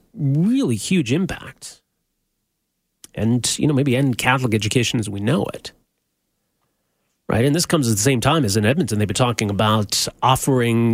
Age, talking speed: 30-49, 165 wpm